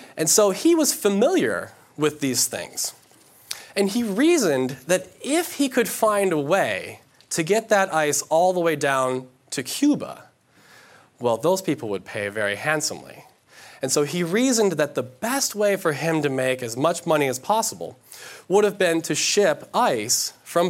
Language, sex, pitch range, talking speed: English, male, 130-175 Hz, 170 wpm